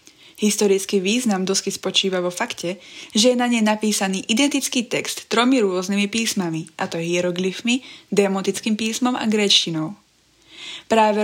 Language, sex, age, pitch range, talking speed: Slovak, female, 20-39, 185-225 Hz, 130 wpm